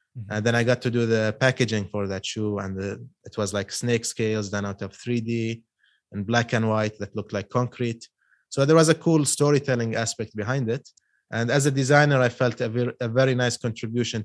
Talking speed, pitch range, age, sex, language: 215 wpm, 105-120 Hz, 20-39, male, English